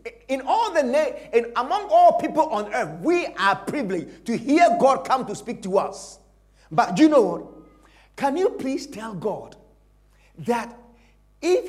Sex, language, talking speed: male, English, 165 wpm